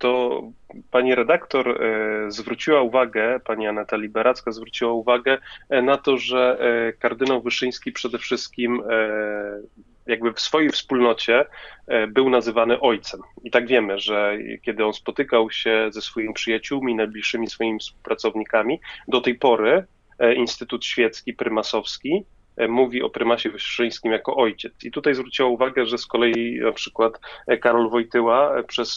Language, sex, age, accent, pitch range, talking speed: Polish, male, 30-49, native, 110-125 Hz, 130 wpm